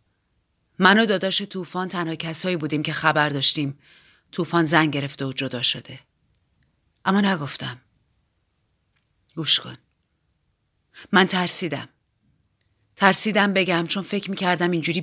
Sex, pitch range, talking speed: female, 140-205 Hz, 110 wpm